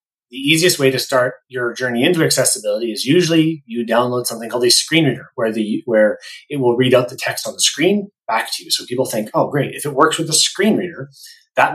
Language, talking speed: English, 235 wpm